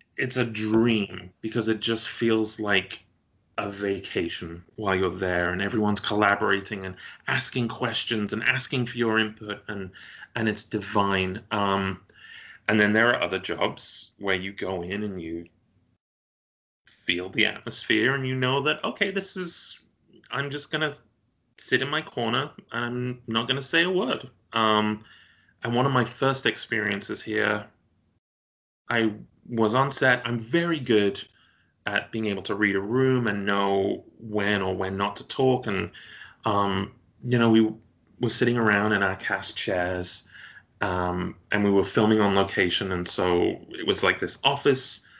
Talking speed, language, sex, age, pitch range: 165 wpm, English, male, 30-49, 95-120 Hz